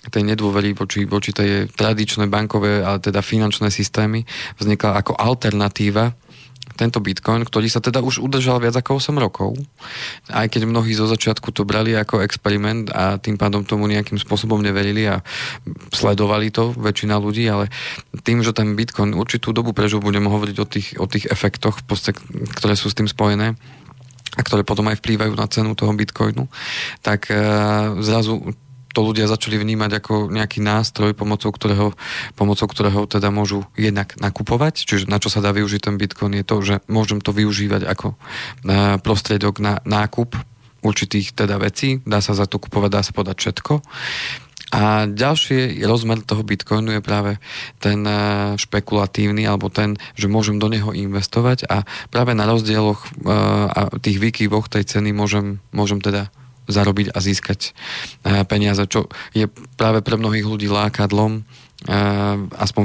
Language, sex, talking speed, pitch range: Slovak, male, 155 wpm, 100-110 Hz